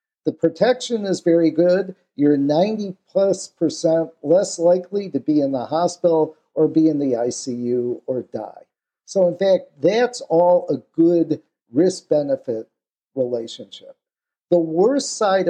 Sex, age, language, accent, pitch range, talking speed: male, 50-69, English, American, 140-190 Hz, 135 wpm